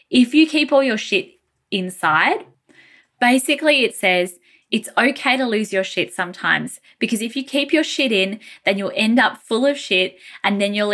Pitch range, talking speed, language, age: 190-265 Hz, 185 wpm, English, 10-29